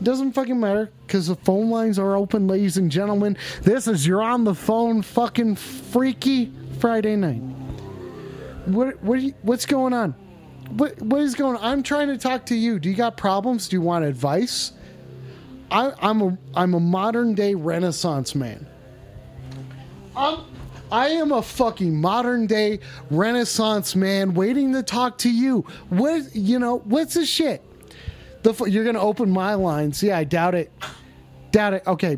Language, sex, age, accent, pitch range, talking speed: English, male, 30-49, American, 150-245 Hz, 165 wpm